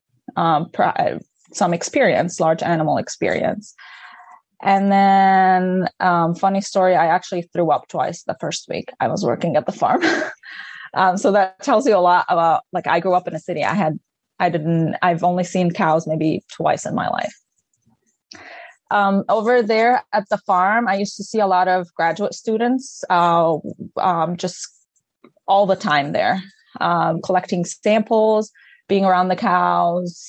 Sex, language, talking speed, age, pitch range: female, English, 160 wpm, 20-39, 170-200 Hz